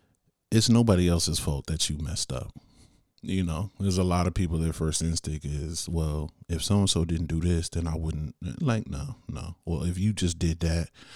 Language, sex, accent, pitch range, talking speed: English, male, American, 85-115 Hz, 210 wpm